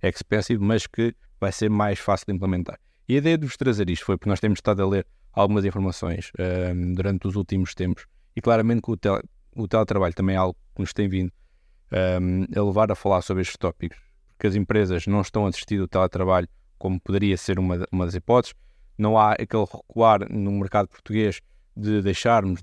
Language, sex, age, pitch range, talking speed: Portuguese, male, 20-39, 95-115 Hz, 190 wpm